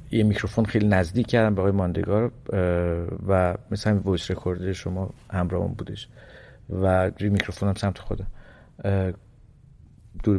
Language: Persian